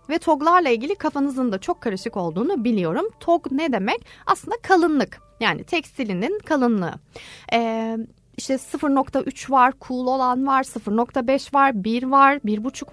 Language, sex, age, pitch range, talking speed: Turkish, female, 30-49, 210-285 Hz, 135 wpm